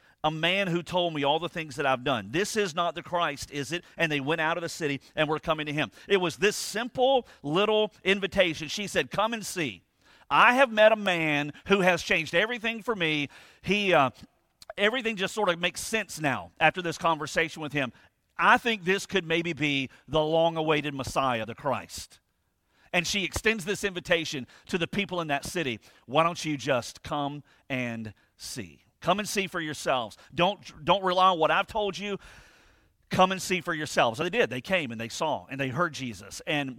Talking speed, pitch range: 205 wpm, 140-185 Hz